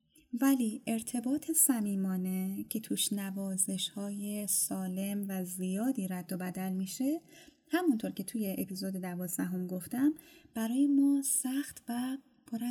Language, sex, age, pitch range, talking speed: Persian, female, 10-29, 180-260 Hz, 120 wpm